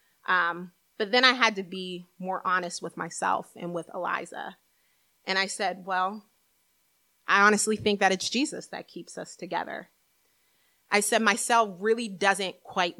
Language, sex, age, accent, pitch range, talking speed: English, female, 30-49, American, 175-205 Hz, 160 wpm